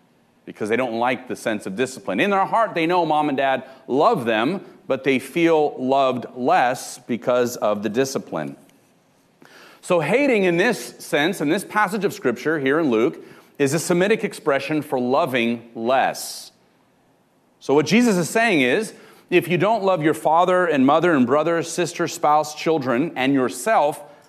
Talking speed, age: 170 wpm, 40-59